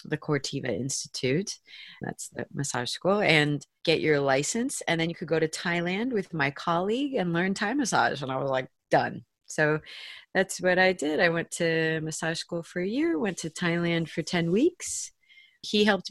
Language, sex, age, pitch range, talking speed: English, female, 30-49, 150-190 Hz, 190 wpm